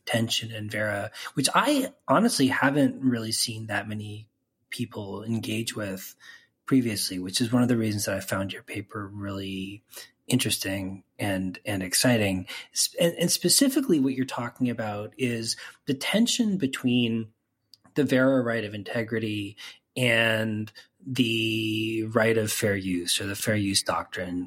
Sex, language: male, English